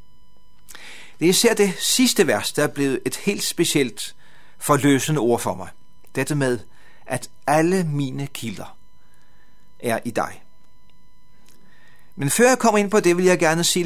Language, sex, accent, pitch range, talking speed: Danish, male, native, 135-185 Hz, 155 wpm